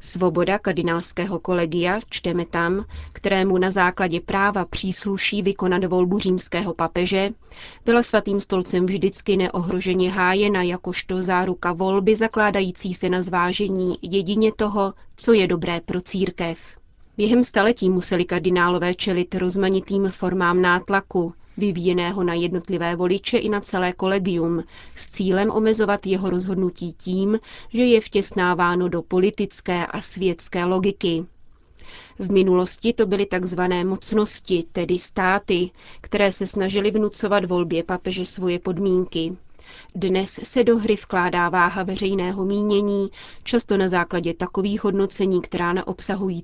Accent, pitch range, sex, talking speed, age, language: native, 180-200 Hz, female, 125 wpm, 30-49, Czech